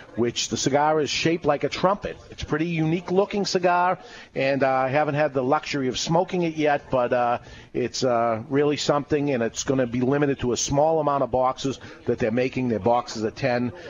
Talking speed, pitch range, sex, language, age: 210 wpm, 125-155 Hz, male, English, 50-69